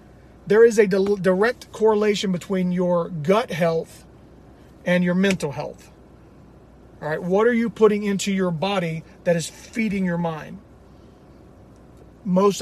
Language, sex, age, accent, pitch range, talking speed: English, male, 40-59, American, 170-200 Hz, 135 wpm